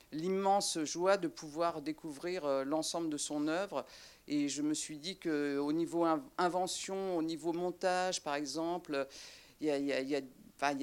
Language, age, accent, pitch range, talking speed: French, 50-69, French, 145-185 Hz, 150 wpm